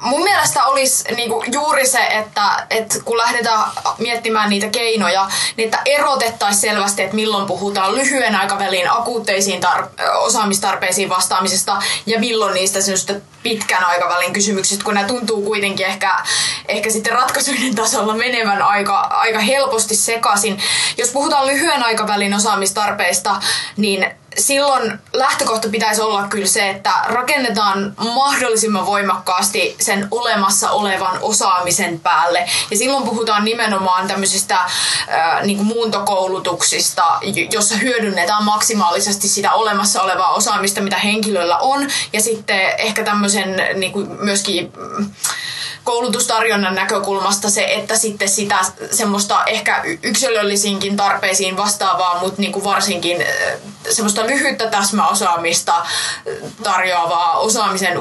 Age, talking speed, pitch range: 20-39, 110 wpm, 195-225 Hz